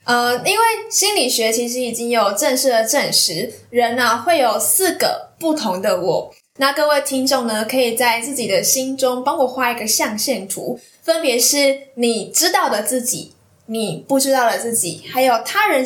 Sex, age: female, 10-29